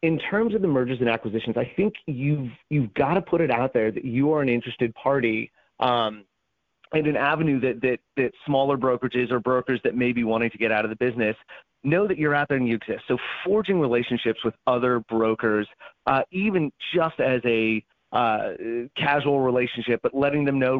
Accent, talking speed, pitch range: American, 200 wpm, 110-135 Hz